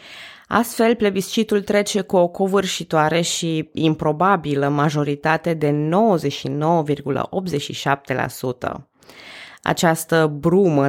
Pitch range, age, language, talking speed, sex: 145-180 Hz, 20-39, Romanian, 70 wpm, female